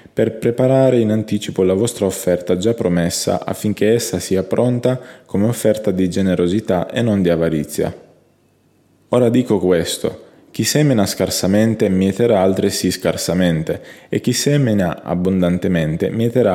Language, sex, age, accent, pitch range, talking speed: Italian, male, 20-39, native, 90-110 Hz, 125 wpm